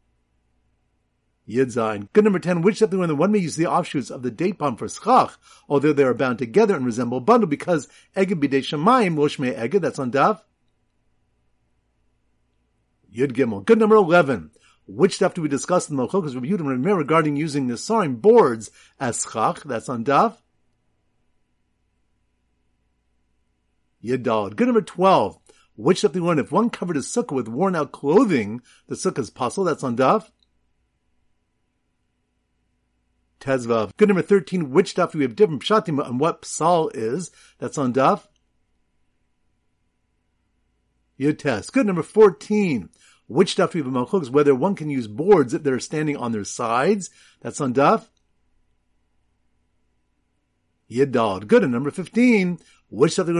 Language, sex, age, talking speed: English, male, 50-69, 150 wpm